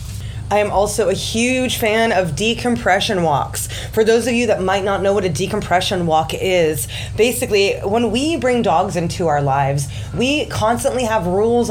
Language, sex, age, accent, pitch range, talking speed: English, female, 20-39, American, 160-215 Hz, 175 wpm